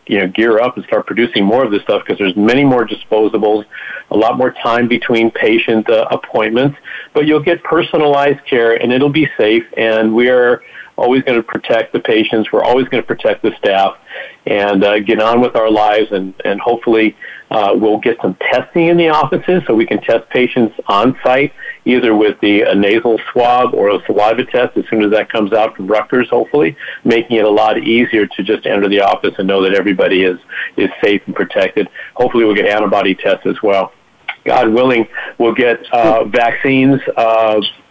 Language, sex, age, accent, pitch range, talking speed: English, male, 50-69, American, 105-125 Hz, 200 wpm